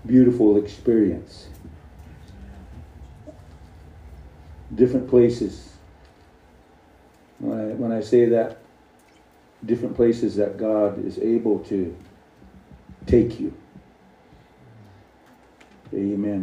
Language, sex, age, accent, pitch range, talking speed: English, male, 50-69, American, 95-120 Hz, 75 wpm